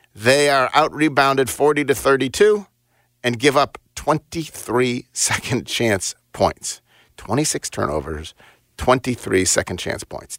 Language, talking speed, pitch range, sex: English, 115 wpm, 100-130 Hz, male